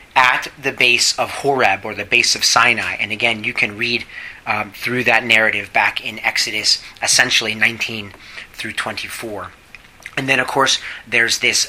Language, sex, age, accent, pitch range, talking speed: English, male, 30-49, American, 110-130 Hz, 165 wpm